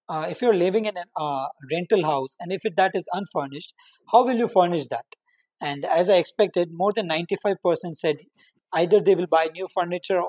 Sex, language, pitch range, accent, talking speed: male, English, 170-220 Hz, Indian, 190 wpm